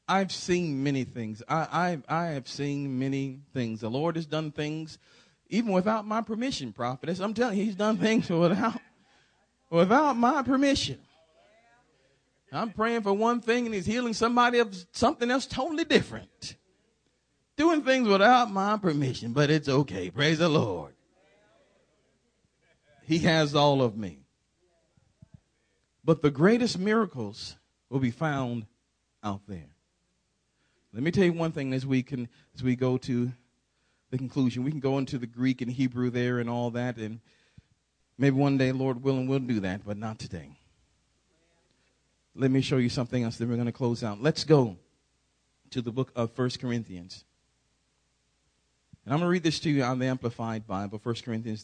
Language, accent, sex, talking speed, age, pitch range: English, American, male, 165 wpm, 40-59, 115-170 Hz